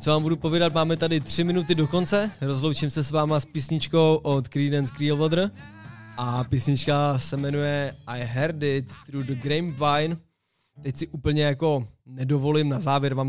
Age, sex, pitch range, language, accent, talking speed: 20-39, male, 135-155 Hz, Czech, native, 165 wpm